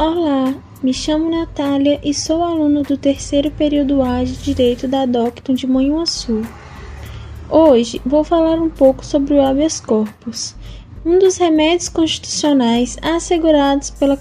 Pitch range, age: 255-330 Hz, 10-29